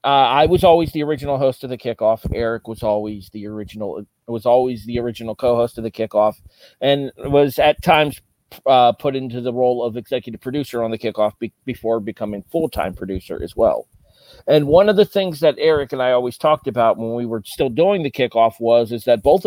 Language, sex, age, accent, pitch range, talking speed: English, male, 40-59, American, 115-145 Hz, 210 wpm